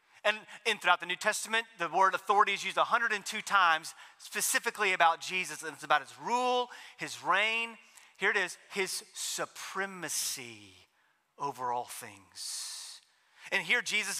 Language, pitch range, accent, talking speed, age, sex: English, 195-280 Hz, American, 145 wpm, 30-49, male